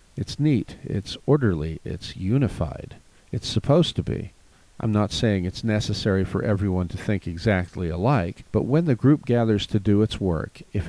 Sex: male